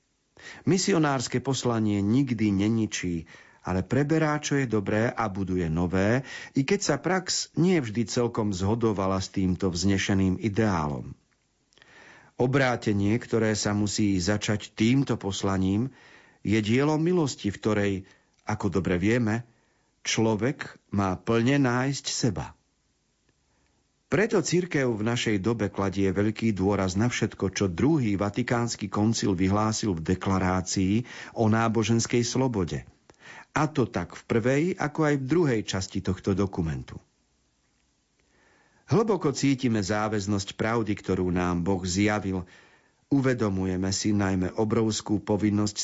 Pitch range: 95-120 Hz